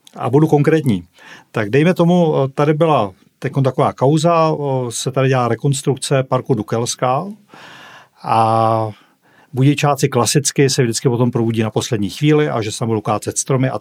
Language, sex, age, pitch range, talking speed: Czech, male, 40-59, 125-155 Hz, 145 wpm